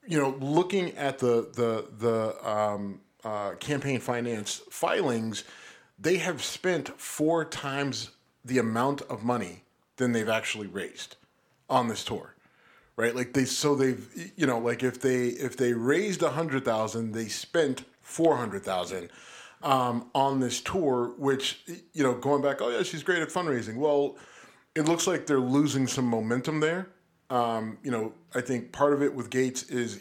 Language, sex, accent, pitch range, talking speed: English, male, American, 120-140 Hz, 170 wpm